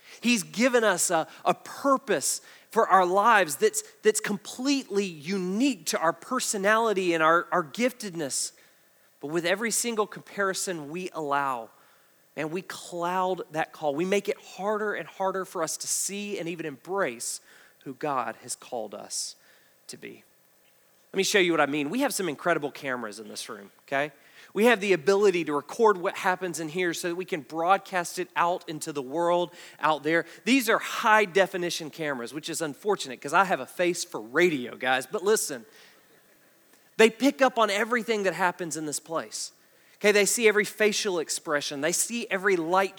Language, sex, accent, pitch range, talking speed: English, male, American, 160-210 Hz, 180 wpm